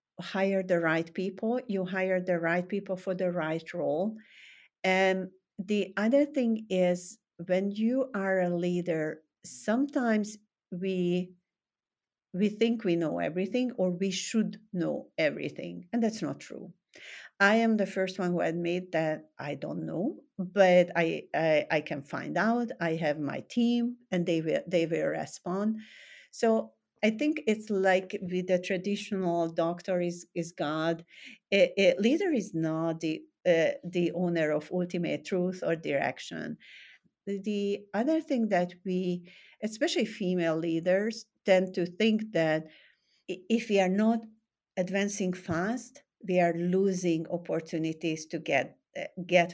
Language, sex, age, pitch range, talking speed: English, female, 50-69, 175-215 Hz, 145 wpm